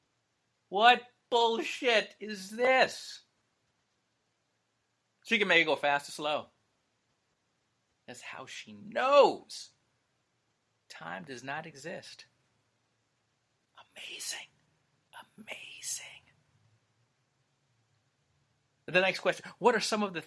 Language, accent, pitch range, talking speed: English, American, 110-140 Hz, 90 wpm